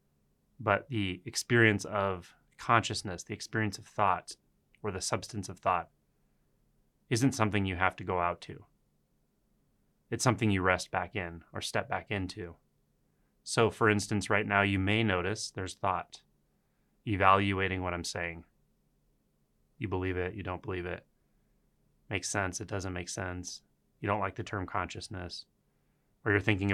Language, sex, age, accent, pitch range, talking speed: English, male, 30-49, American, 90-110 Hz, 155 wpm